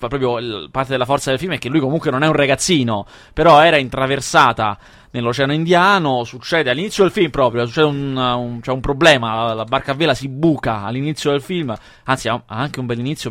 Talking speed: 210 wpm